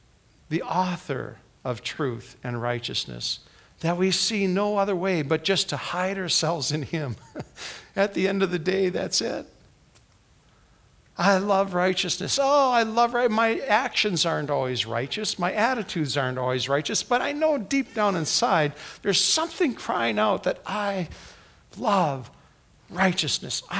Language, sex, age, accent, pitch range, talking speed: English, male, 50-69, American, 130-205 Hz, 145 wpm